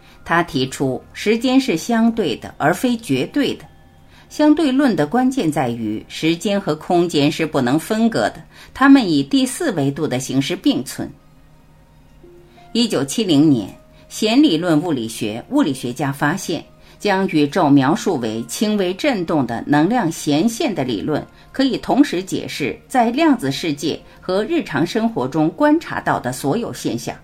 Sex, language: female, Chinese